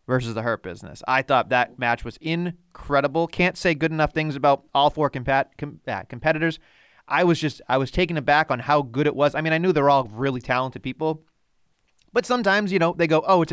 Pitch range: 130-165 Hz